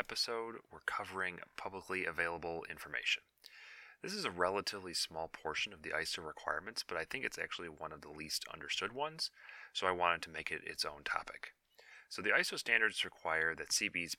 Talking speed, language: 180 wpm, English